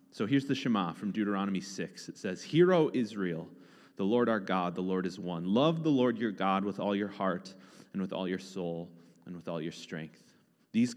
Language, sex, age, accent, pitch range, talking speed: English, male, 30-49, American, 100-160 Hz, 220 wpm